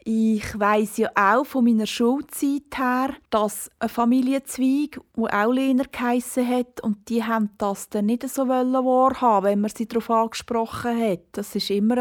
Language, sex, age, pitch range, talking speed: German, female, 30-49, 205-245 Hz, 165 wpm